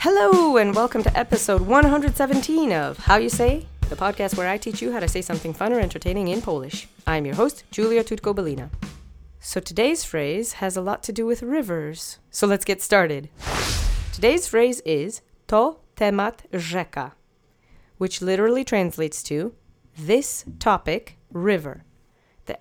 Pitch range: 160-225 Hz